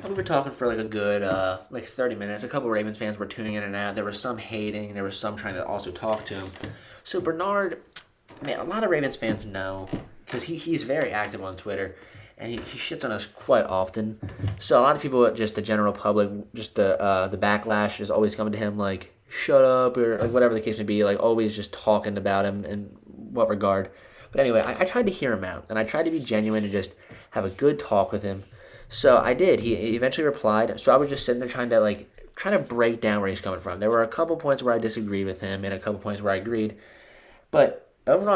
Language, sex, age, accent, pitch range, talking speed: English, male, 20-39, American, 105-130 Hz, 255 wpm